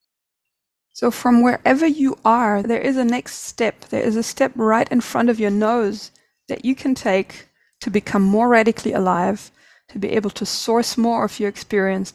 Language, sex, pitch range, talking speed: English, female, 215-255 Hz, 190 wpm